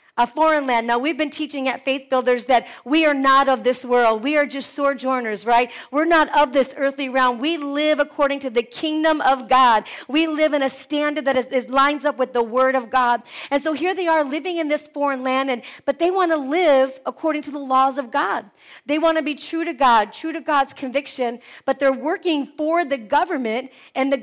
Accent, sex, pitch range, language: American, female, 255-295 Hz, English